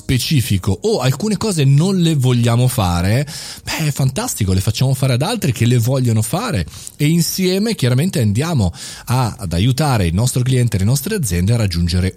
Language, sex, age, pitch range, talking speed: Italian, male, 30-49, 110-155 Hz, 180 wpm